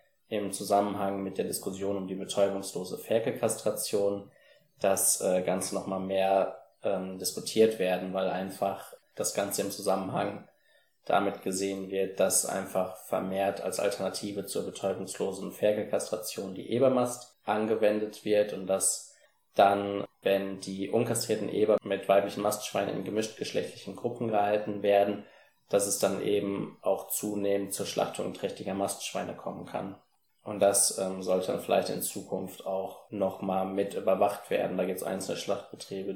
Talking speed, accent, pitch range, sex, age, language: 135 wpm, German, 95-105 Hz, male, 20-39, English